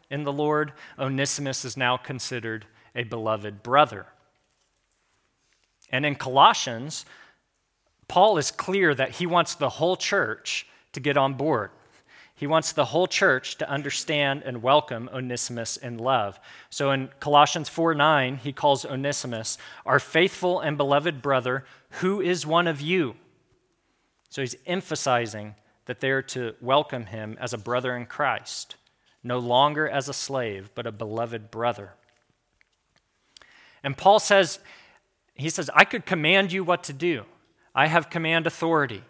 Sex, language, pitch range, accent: male, English, 125-150 Hz, American